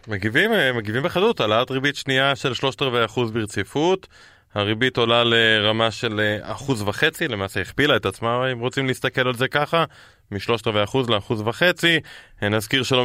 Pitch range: 105-135 Hz